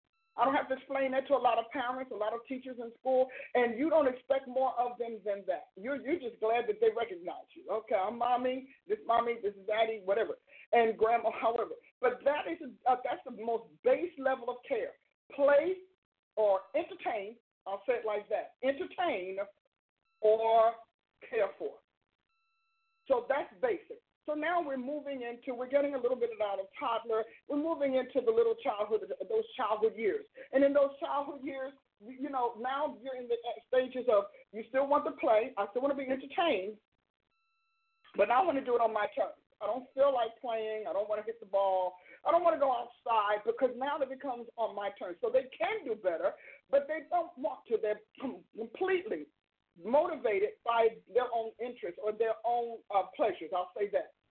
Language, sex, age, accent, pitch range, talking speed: English, male, 40-59, American, 230-330 Hz, 195 wpm